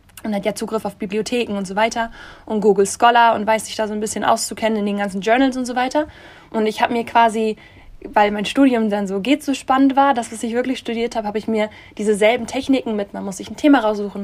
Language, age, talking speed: German, 10-29, 255 wpm